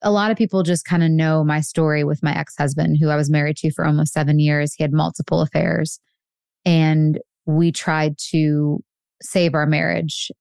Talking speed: 190 wpm